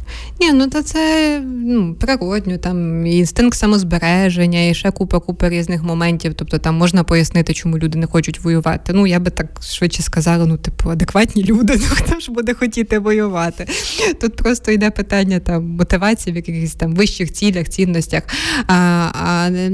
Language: Ukrainian